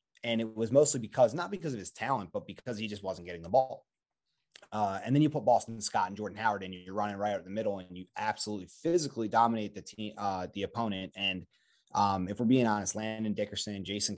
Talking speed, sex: 235 wpm, male